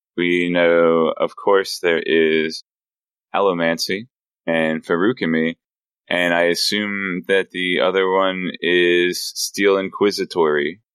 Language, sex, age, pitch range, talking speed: English, male, 20-39, 85-115 Hz, 105 wpm